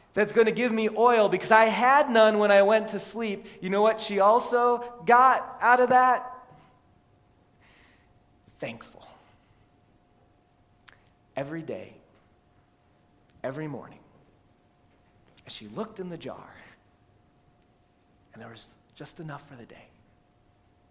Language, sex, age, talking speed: English, male, 40-59, 125 wpm